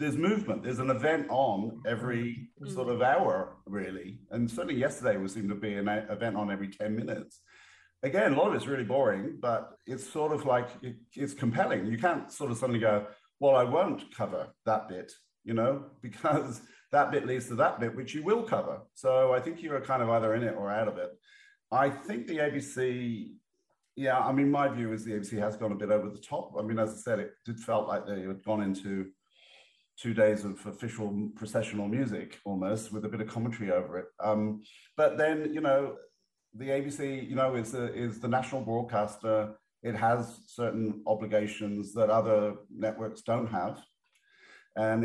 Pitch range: 105-135 Hz